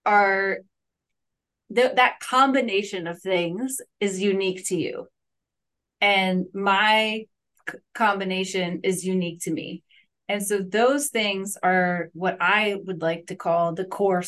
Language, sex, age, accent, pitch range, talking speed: English, female, 20-39, American, 175-200 Hz, 120 wpm